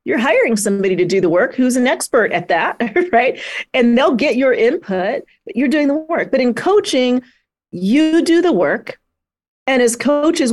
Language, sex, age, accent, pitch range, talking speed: English, female, 40-59, American, 180-245 Hz, 190 wpm